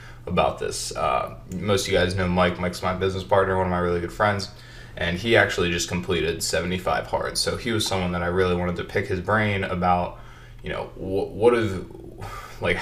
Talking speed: 210 wpm